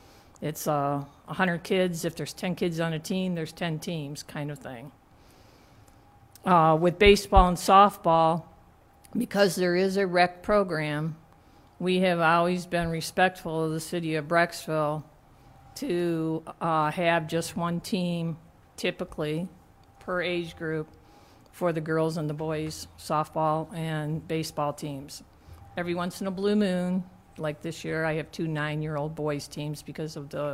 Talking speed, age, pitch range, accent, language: 150 wpm, 50-69, 150-180 Hz, American, English